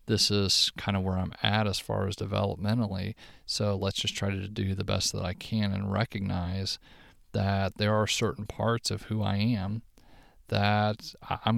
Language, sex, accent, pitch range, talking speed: English, male, American, 100-115 Hz, 180 wpm